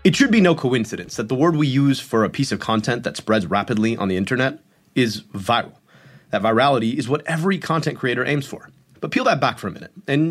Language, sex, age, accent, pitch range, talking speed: English, male, 30-49, American, 120-160 Hz, 235 wpm